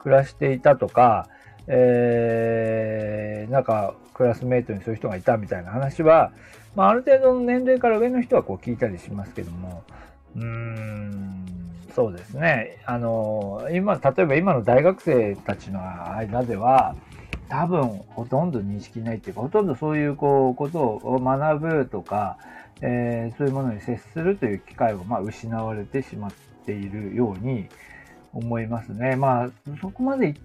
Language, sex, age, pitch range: Japanese, male, 40-59, 110-160 Hz